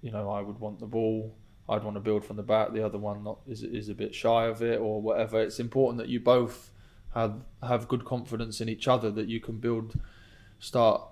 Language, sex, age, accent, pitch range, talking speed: English, male, 20-39, British, 105-115 Hz, 235 wpm